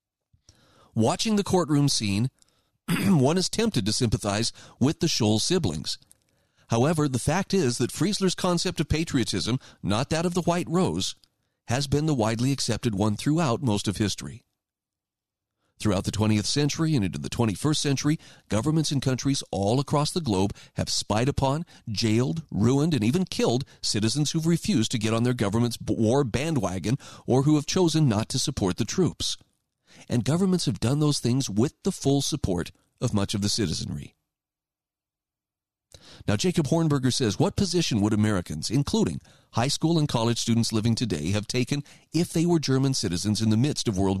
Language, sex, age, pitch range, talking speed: English, male, 40-59, 105-150 Hz, 170 wpm